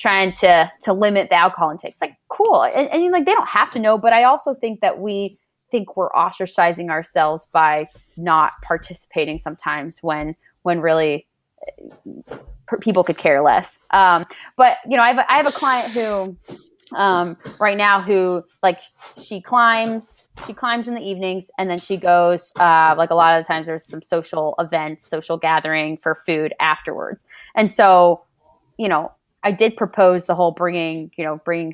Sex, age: female, 20-39